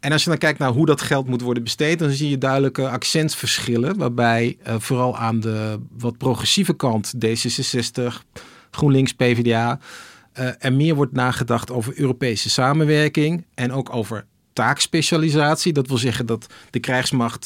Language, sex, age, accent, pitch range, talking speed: Dutch, male, 40-59, Dutch, 120-140 Hz, 160 wpm